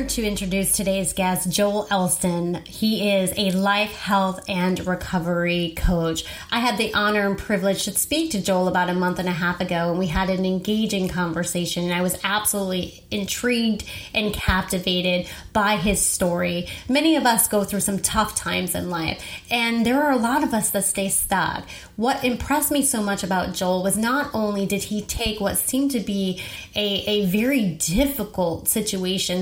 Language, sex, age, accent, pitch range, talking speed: English, female, 30-49, American, 185-225 Hz, 180 wpm